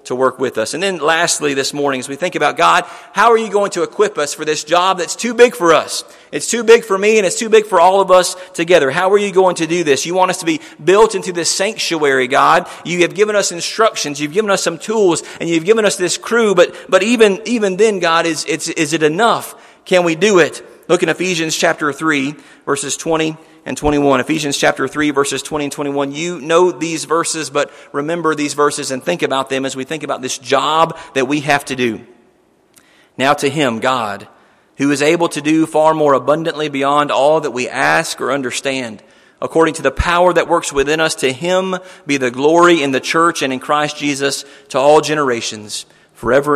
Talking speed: 225 wpm